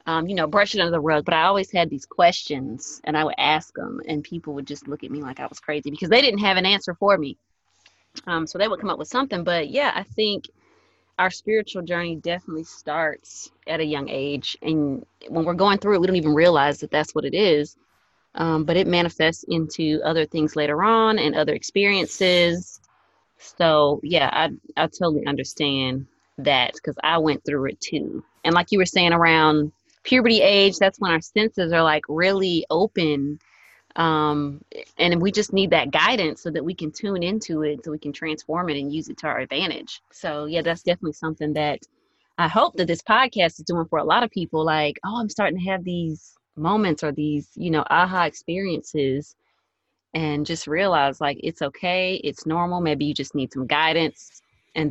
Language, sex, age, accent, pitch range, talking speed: English, female, 20-39, American, 150-180 Hz, 205 wpm